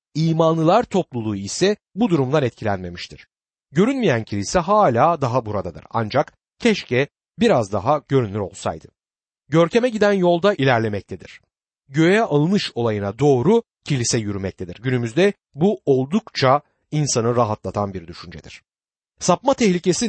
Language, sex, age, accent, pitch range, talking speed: Turkish, male, 60-79, native, 125-190 Hz, 110 wpm